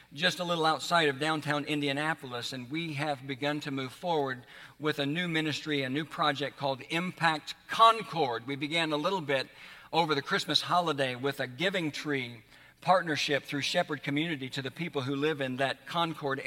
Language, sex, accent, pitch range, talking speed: English, male, American, 135-160 Hz, 180 wpm